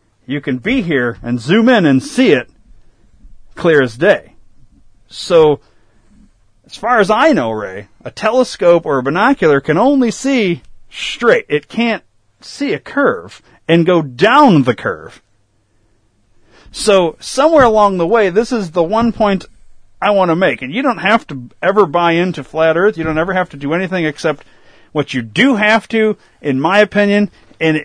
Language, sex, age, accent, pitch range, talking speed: English, male, 40-59, American, 110-175 Hz, 170 wpm